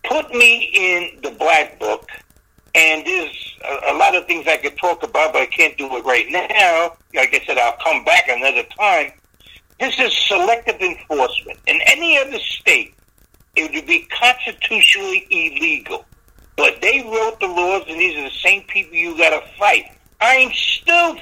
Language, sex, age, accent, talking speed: English, male, 60-79, American, 175 wpm